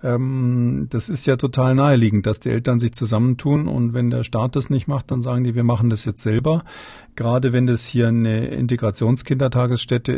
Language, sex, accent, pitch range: German, male, German, 115-140 Hz